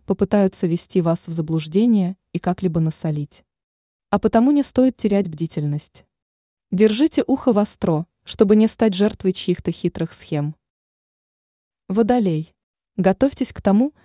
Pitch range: 170-220 Hz